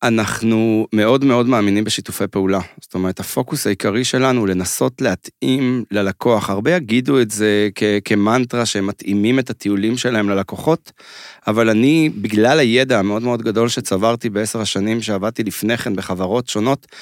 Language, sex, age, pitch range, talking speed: Hebrew, male, 30-49, 105-125 Hz, 150 wpm